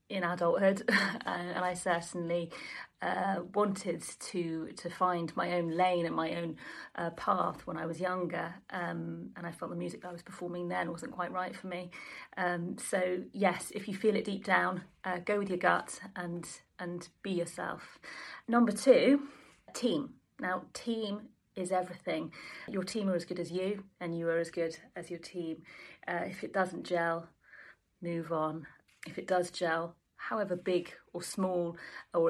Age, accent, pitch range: 30-49, British, 170-195 Hz